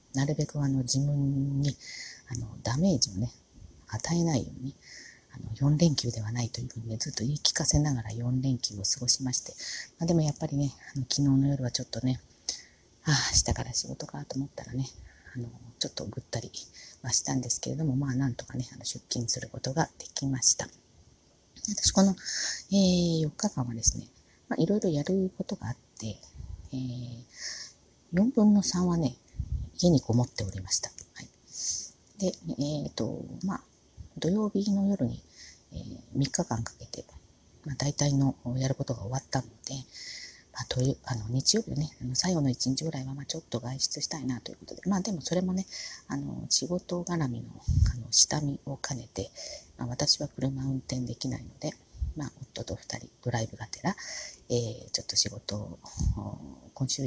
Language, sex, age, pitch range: Japanese, female, 30-49, 120-150 Hz